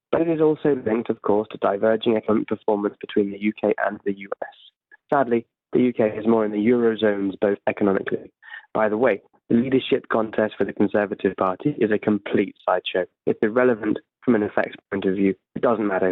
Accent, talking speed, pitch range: British, 195 wpm, 105-130 Hz